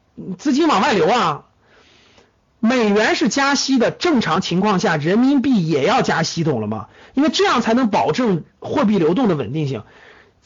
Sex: male